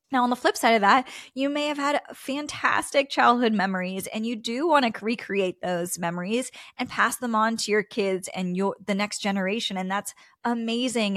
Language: English